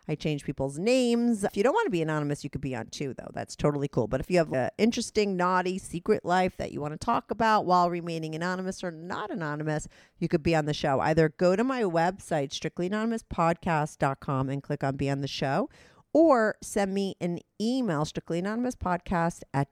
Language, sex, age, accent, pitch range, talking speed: English, female, 40-59, American, 150-195 Hz, 205 wpm